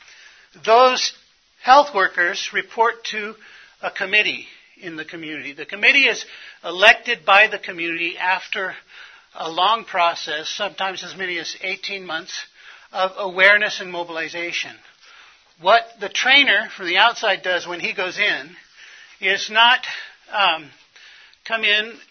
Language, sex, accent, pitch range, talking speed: English, male, American, 180-210 Hz, 130 wpm